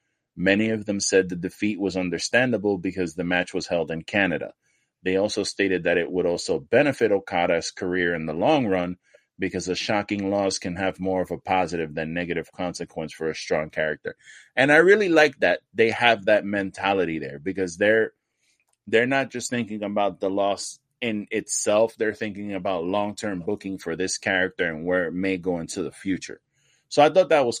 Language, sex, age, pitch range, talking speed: English, male, 20-39, 90-130 Hz, 190 wpm